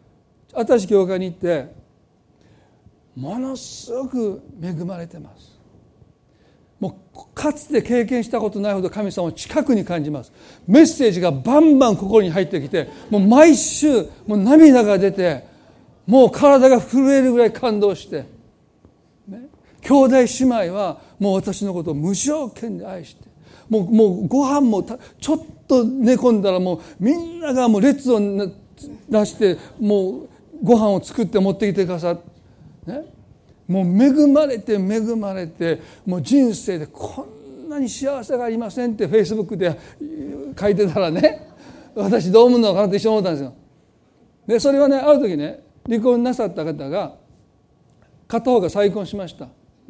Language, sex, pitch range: Japanese, male, 190-255 Hz